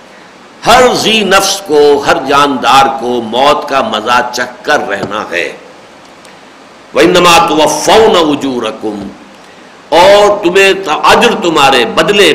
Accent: Indian